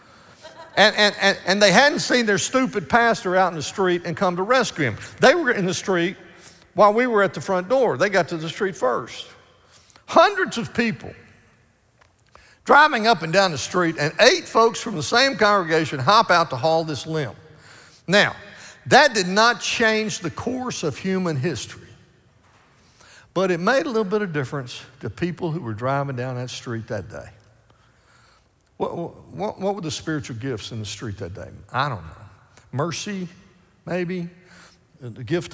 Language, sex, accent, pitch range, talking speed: English, male, American, 115-190 Hz, 180 wpm